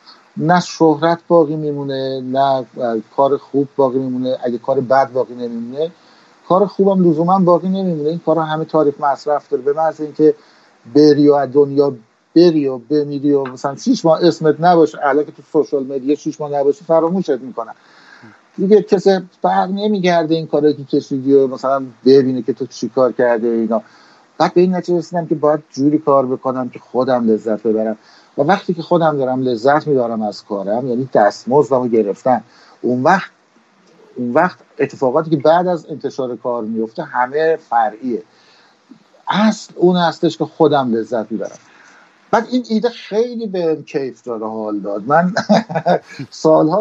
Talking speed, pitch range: 155 wpm, 140-190 Hz